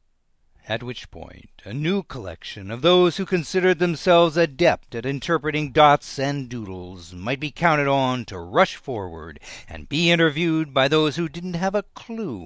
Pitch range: 90-155 Hz